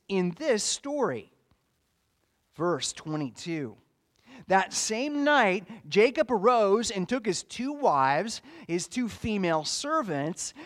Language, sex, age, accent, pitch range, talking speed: English, male, 30-49, American, 170-240 Hz, 105 wpm